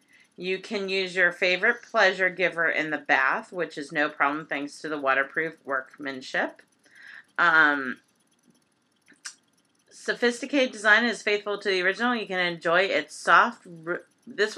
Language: English